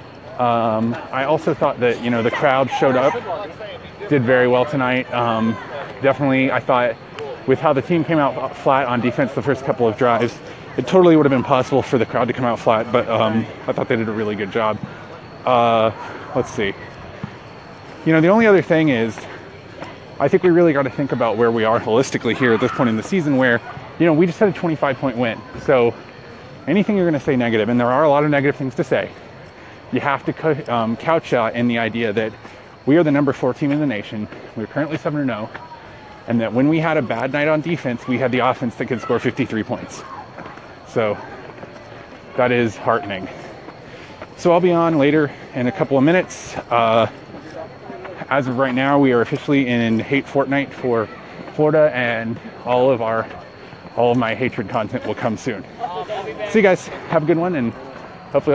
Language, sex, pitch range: English, male, 120-150 Hz